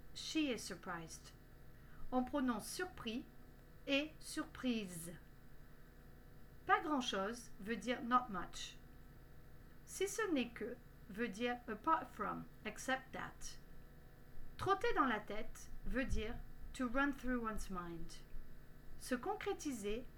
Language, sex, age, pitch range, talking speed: French, female, 40-59, 205-280 Hz, 115 wpm